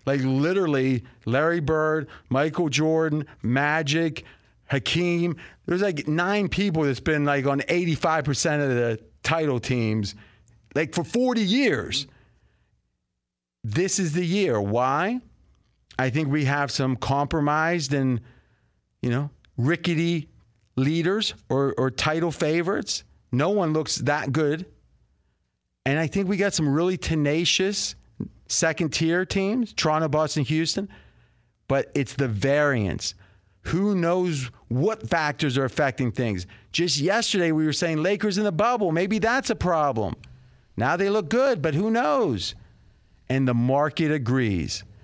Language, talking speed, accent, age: English, 130 wpm, American, 40-59